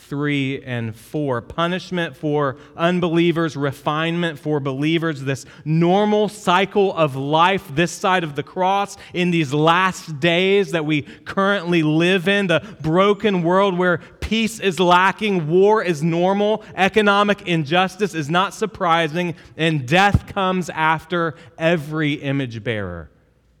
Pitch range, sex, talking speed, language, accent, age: 145-190 Hz, male, 125 wpm, English, American, 30-49